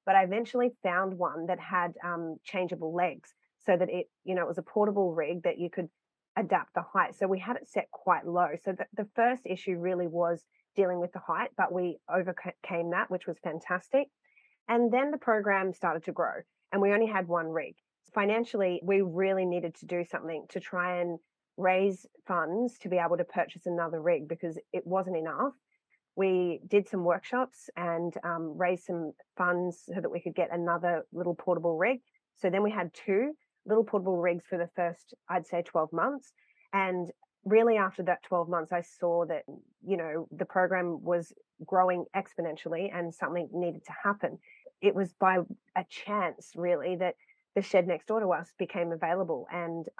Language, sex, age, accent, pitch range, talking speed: English, female, 30-49, Australian, 175-200 Hz, 185 wpm